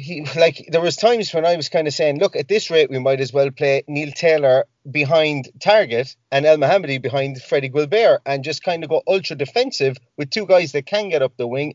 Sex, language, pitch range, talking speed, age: male, English, 125-160 Hz, 235 wpm, 30-49